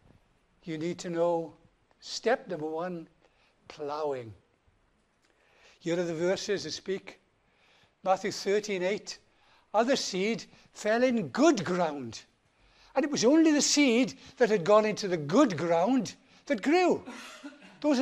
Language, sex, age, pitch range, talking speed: English, male, 60-79, 180-235 Hz, 125 wpm